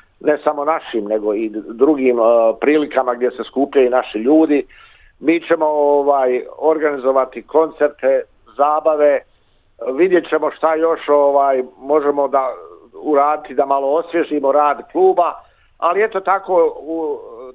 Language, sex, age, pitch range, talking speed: Croatian, male, 50-69, 140-175 Hz, 125 wpm